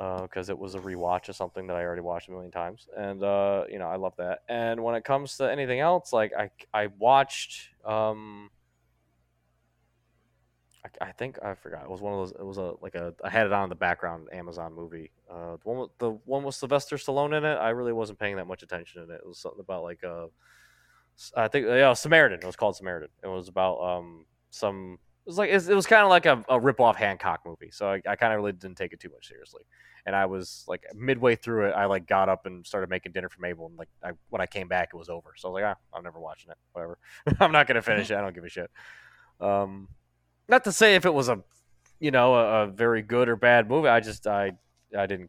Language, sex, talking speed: English, male, 250 wpm